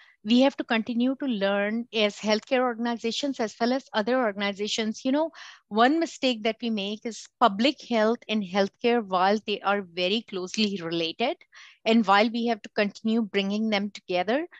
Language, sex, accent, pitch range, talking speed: English, female, Indian, 210-265 Hz, 170 wpm